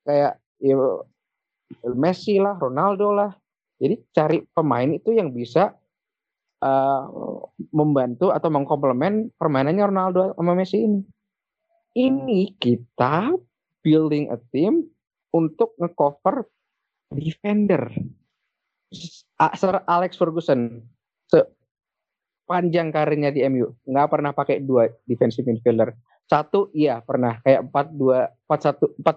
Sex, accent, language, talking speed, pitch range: male, native, Indonesian, 100 wpm, 135-195 Hz